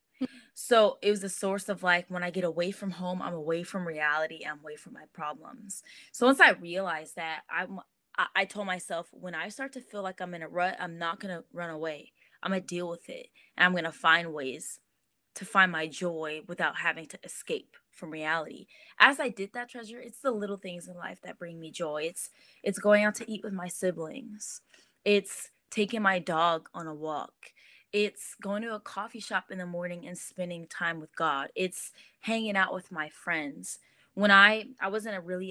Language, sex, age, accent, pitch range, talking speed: English, female, 20-39, American, 165-205 Hz, 220 wpm